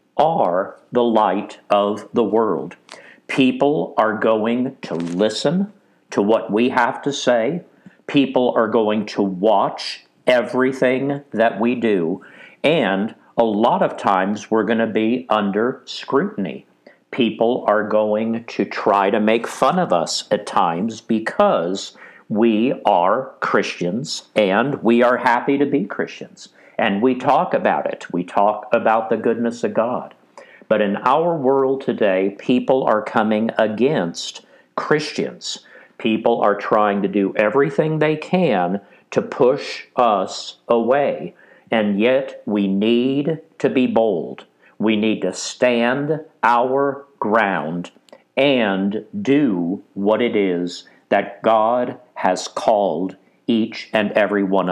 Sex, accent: male, American